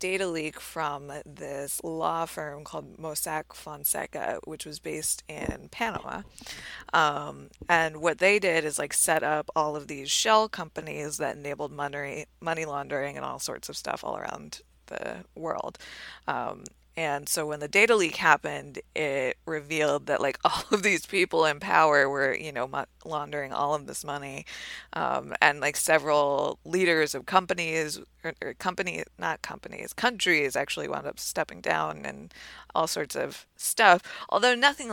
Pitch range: 145-175 Hz